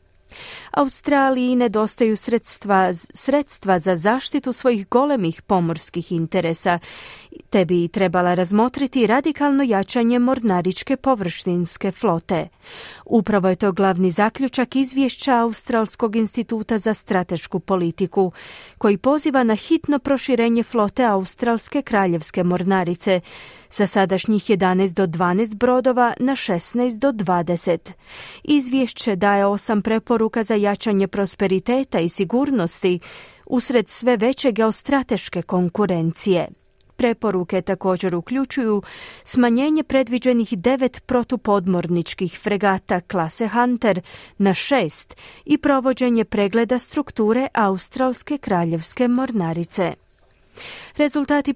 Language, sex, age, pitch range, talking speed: Croatian, female, 40-59, 190-250 Hz, 95 wpm